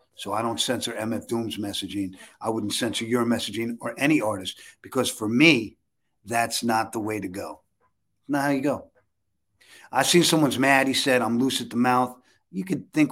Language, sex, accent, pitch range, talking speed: English, male, American, 115-130 Hz, 190 wpm